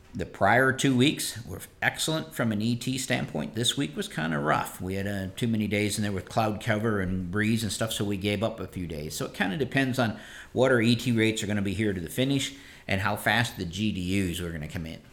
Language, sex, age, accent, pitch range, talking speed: English, male, 50-69, American, 90-110 Hz, 255 wpm